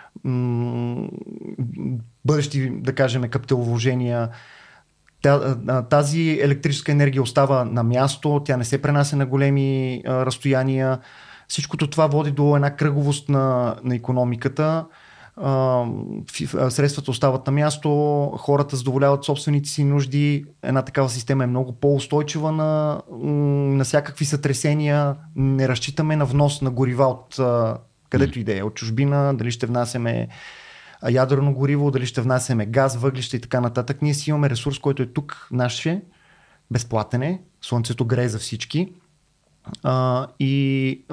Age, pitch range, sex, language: 30-49, 125-145 Hz, male, Bulgarian